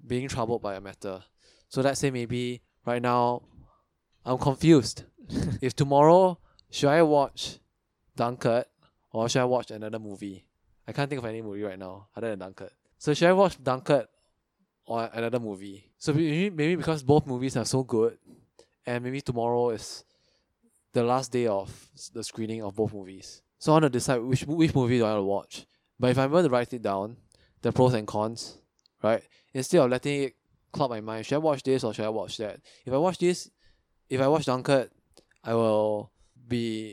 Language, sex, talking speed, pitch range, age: English, male, 190 wpm, 105-135 Hz, 20-39